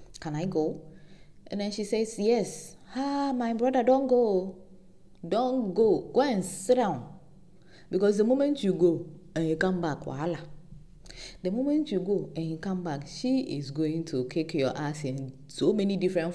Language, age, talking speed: English, 20-39, 175 wpm